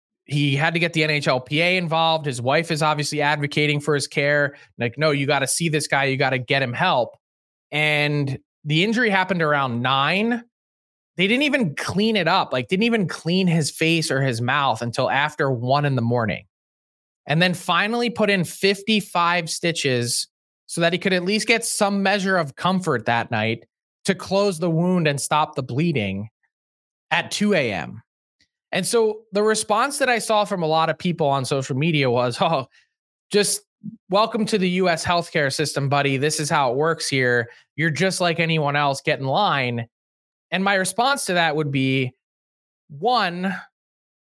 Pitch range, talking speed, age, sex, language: 135-185 Hz, 180 wpm, 20-39, male, English